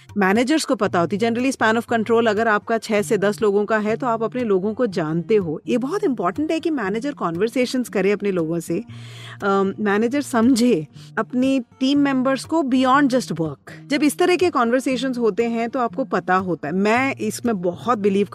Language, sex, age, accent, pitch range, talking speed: English, female, 30-49, Indian, 185-250 Hz, 175 wpm